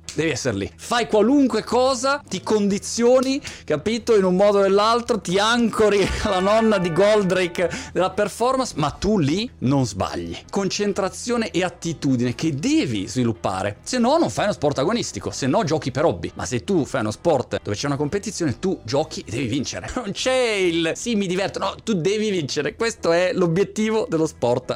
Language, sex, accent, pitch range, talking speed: Italian, male, native, 130-205 Hz, 180 wpm